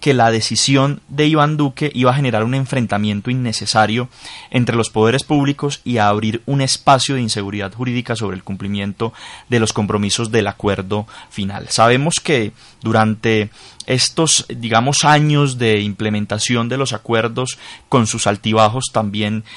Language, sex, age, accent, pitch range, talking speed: Spanish, male, 20-39, Colombian, 105-125 Hz, 145 wpm